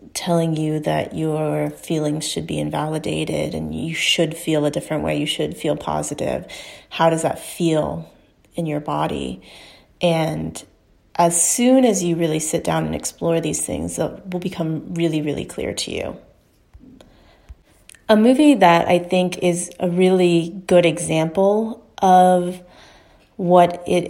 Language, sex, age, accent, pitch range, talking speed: English, female, 30-49, American, 155-175 Hz, 145 wpm